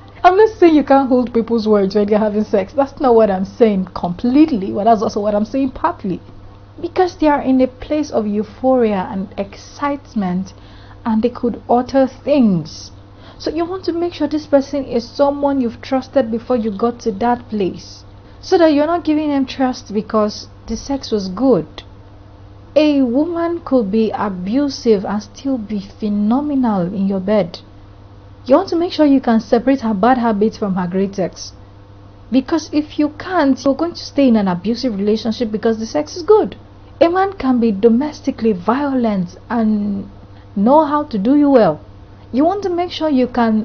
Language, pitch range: English, 200-280 Hz